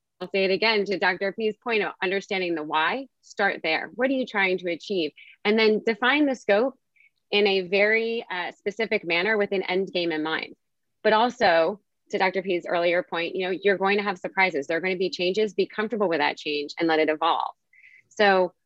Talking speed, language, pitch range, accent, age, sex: 215 wpm, English, 165-210 Hz, American, 30-49, female